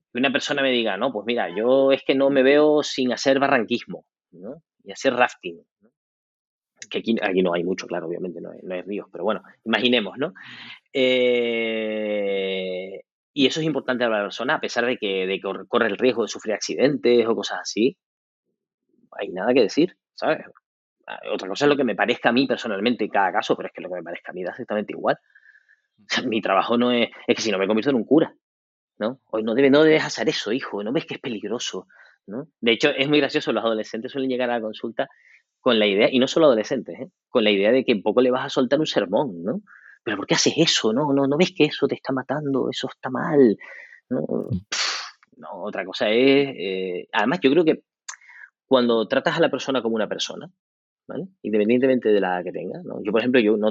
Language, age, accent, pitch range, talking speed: Spanish, 20-39, Spanish, 100-135 Hz, 225 wpm